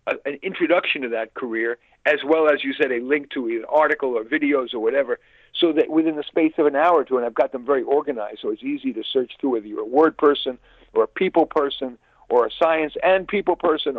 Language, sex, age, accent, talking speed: English, male, 50-69, American, 240 wpm